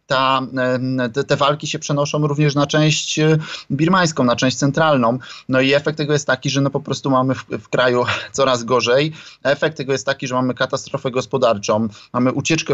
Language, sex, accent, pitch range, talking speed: Polish, male, native, 125-150 Hz, 185 wpm